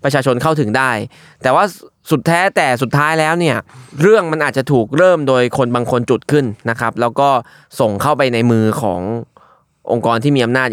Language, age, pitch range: Thai, 20-39, 120-160 Hz